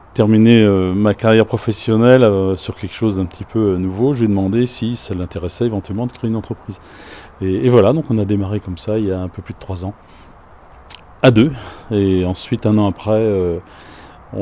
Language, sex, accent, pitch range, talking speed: French, male, French, 95-115 Hz, 210 wpm